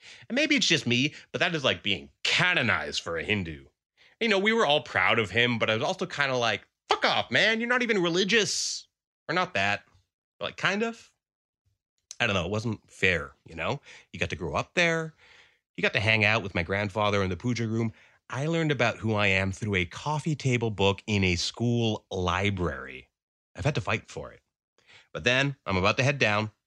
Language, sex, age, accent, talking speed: English, male, 30-49, American, 220 wpm